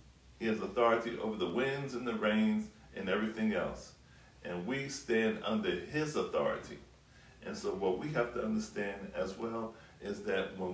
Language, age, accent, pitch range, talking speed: English, 40-59, American, 105-130 Hz, 170 wpm